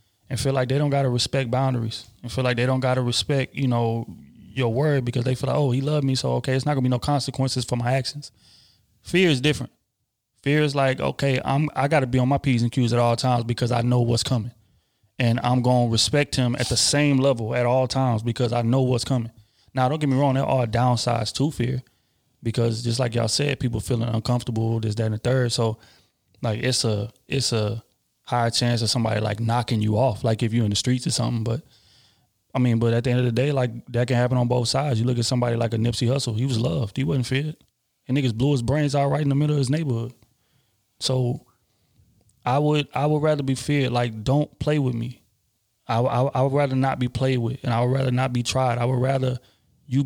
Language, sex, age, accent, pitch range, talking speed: English, male, 20-39, American, 115-135 Hz, 250 wpm